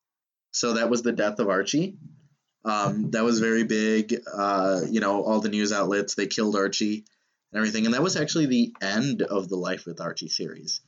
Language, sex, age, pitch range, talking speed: English, male, 20-39, 105-135 Hz, 200 wpm